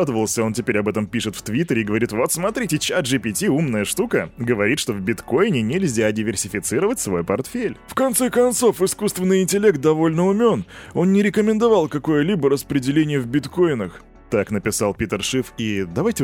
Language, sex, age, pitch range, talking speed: Russian, male, 20-39, 100-145 Hz, 165 wpm